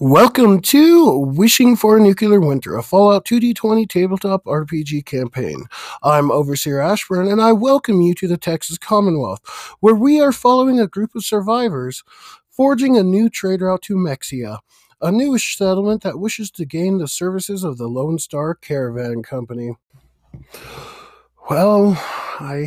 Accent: American